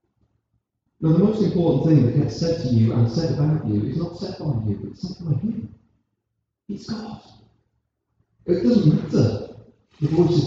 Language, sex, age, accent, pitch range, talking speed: English, male, 40-59, British, 110-145 Hz, 170 wpm